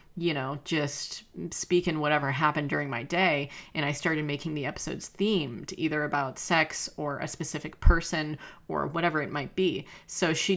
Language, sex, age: English, female, 30-49